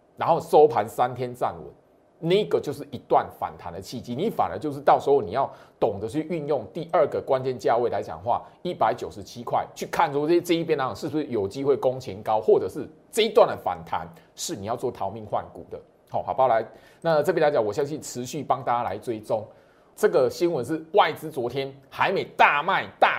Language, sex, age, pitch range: Chinese, male, 30-49, 120-180 Hz